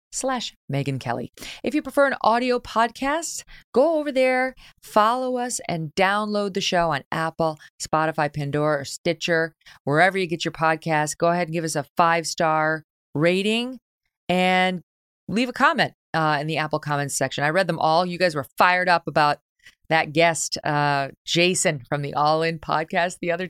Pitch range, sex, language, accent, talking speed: 140-190 Hz, female, English, American, 175 wpm